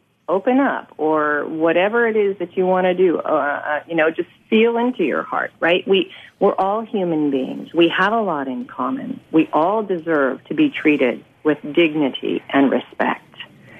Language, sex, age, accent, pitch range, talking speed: English, female, 40-59, American, 150-205 Hz, 180 wpm